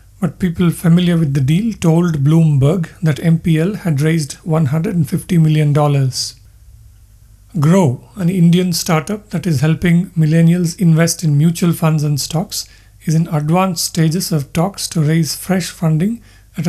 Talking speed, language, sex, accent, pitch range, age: 140 wpm, English, male, Indian, 145-175 Hz, 50-69